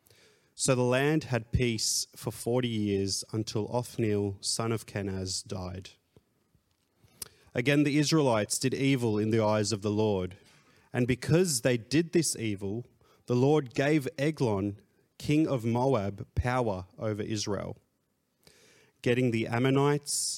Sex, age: male, 30-49